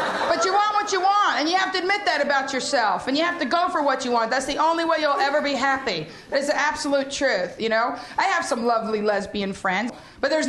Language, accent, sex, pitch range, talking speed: English, American, female, 265-340 Hz, 235 wpm